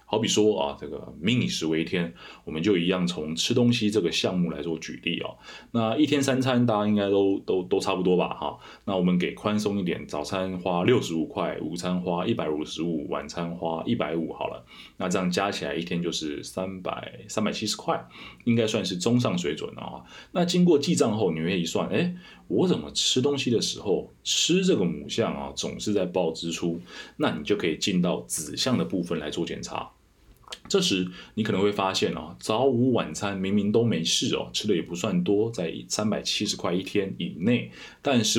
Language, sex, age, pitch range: Chinese, male, 20-39, 80-110 Hz